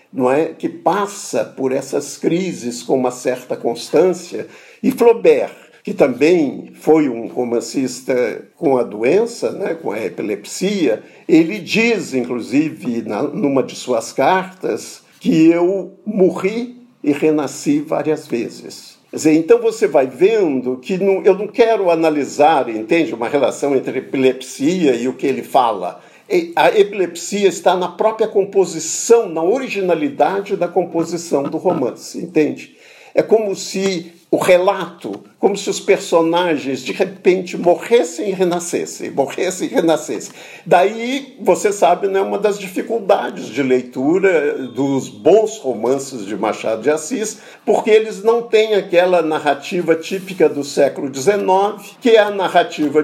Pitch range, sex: 150-210 Hz, male